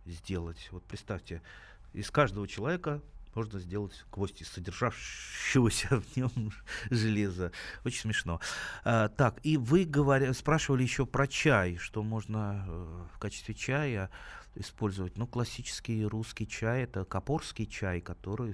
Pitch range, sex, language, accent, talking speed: 95-125 Hz, male, Russian, native, 130 wpm